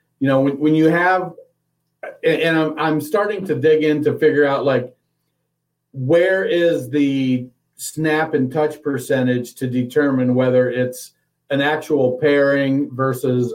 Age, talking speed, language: 50-69, 140 wpm, English